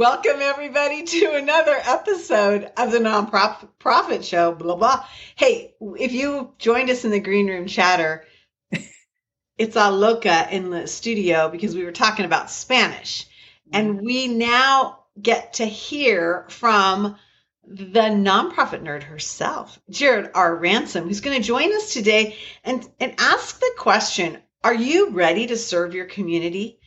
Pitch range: 180-245 Hz